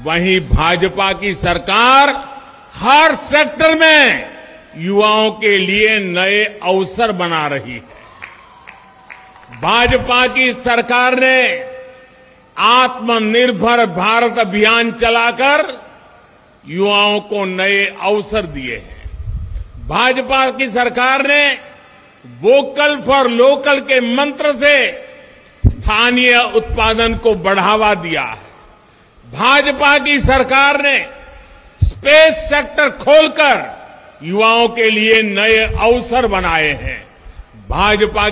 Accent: native